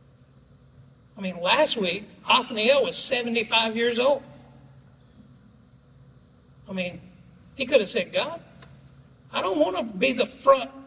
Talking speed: 125 wpm